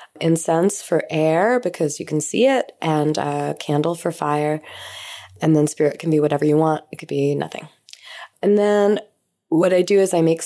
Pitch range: 150-165 Hz